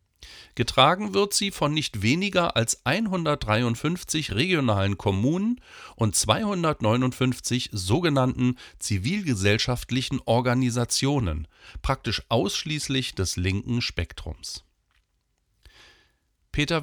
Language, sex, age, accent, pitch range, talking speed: German, male, 40-59, German, 105-140 Hz, 75 wpm